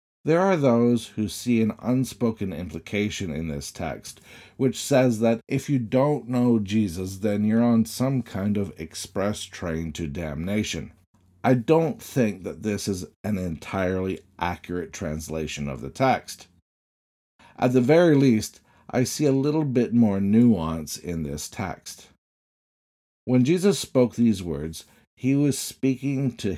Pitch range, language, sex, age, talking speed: 85-125 Hz, English, male, 50-69, 145 wpm